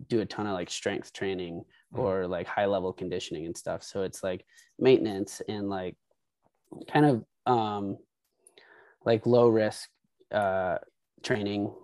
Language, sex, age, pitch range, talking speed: English, male, 20-39, 95-115 Hz, 140 wpm